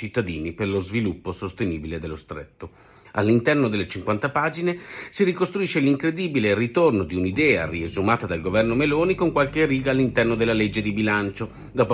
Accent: native